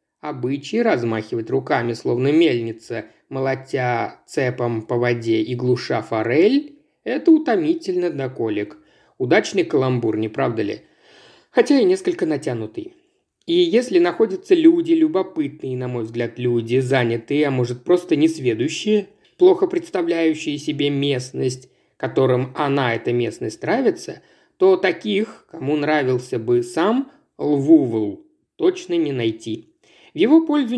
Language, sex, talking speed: Russian, male, 115 wpm